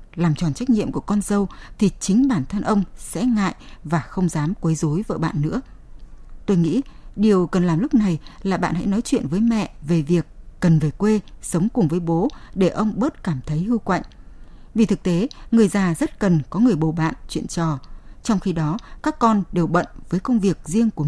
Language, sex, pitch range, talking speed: Vietnamese, female, 165-225 Hz, 220 wpm